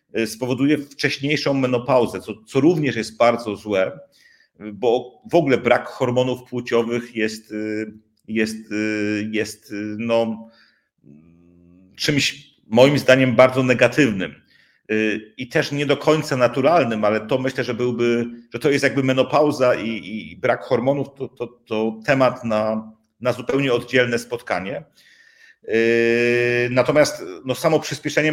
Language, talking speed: Polish, 120 wpm